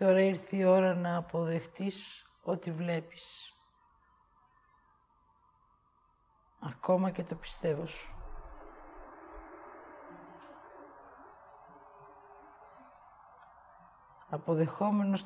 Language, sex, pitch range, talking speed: English, female, 155-185 Hz, 55 wpm